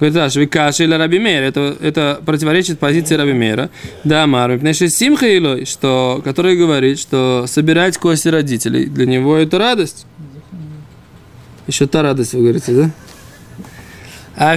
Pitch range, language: 140-180 Hz, Russian